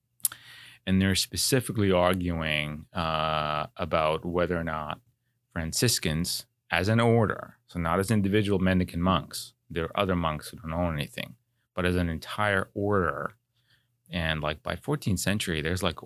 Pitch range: 85-120 Hz